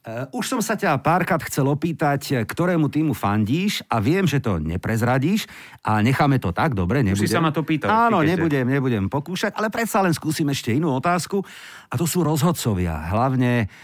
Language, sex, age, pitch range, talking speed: Slovak, male, 50-69, 115-155 Hz, 180 wpm